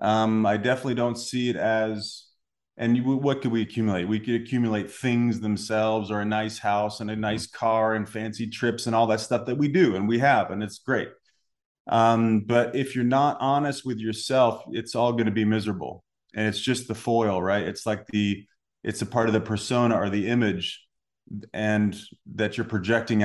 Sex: male